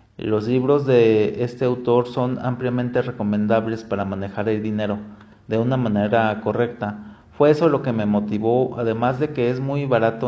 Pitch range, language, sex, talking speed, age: 110-140 Hz, Spanish, male, 165 wpm, 40-59